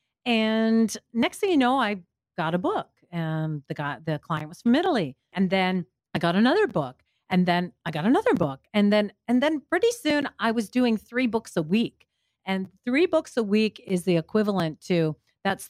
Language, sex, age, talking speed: English, female, 40-59, 200 wpm